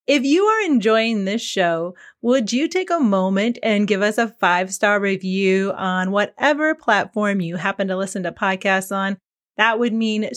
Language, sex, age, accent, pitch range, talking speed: English, female, 30-49, American, 195-235 Hz, 175 wpm